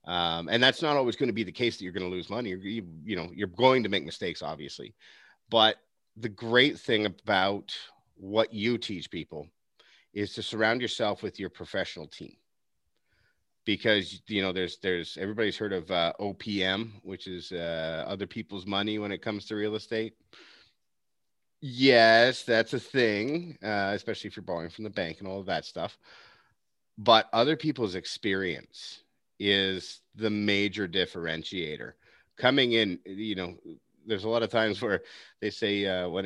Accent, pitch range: American, 95-115 Hz